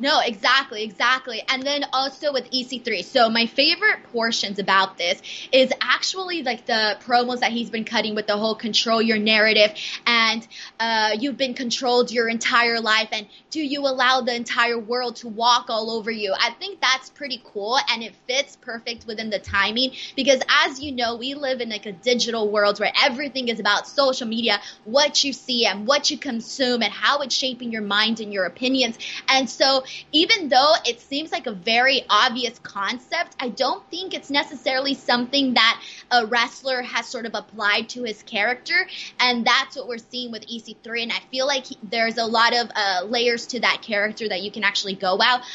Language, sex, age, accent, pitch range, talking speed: English, female, 20-39, American, 220-260 Hz, 195 wpm